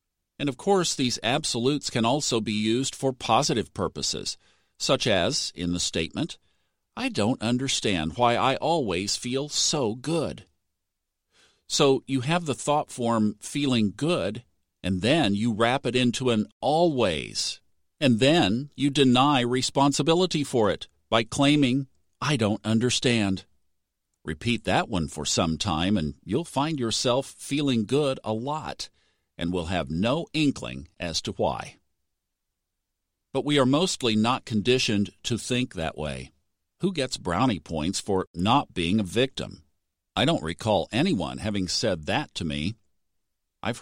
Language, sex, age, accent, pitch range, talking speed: English, male, 50-69, American, 90-135 Hz, 145 wpm